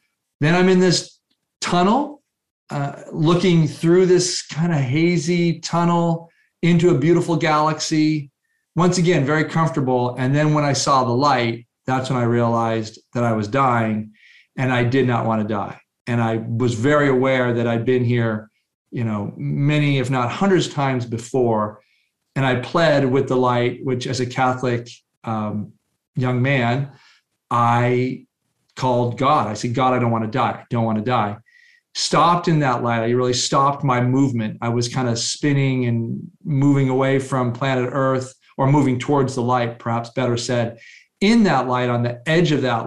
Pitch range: 120-155 Hz